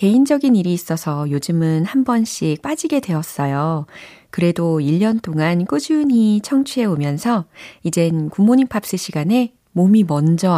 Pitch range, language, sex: 150-220 Hz, Korean, female